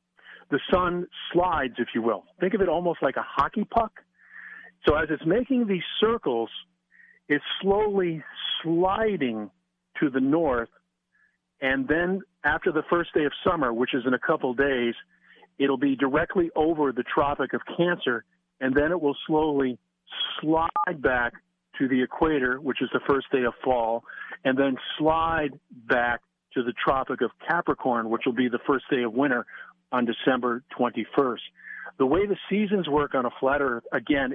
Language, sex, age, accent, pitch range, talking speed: English, male, 50-69, American, 130-180 Hz, 165 wpm